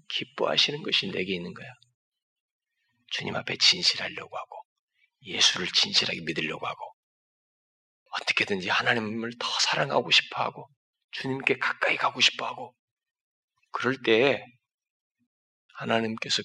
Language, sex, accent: Korean, male, native